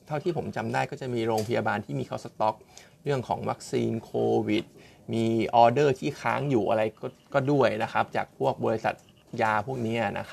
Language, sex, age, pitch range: Thai, male, 20-39, 110-140 Hz